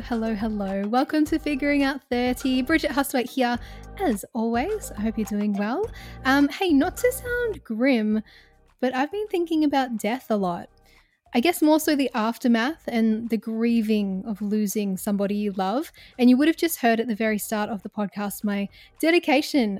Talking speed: 180 wpm